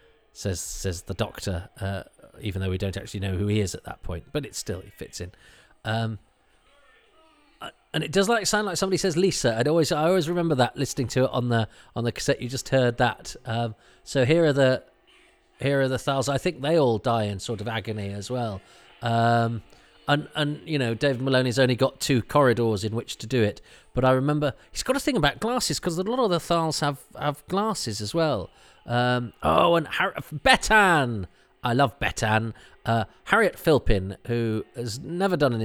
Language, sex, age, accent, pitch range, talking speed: English, male, 40-59, British, 105-140 Hz, 205 wpm